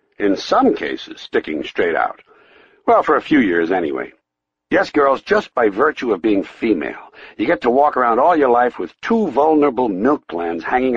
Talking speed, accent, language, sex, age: 185 wpm, American, English, male, 60-79